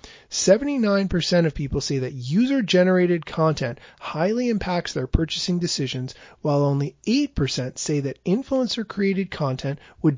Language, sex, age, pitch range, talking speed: English, male, 30-49, 145-200 Hz, 130 wpm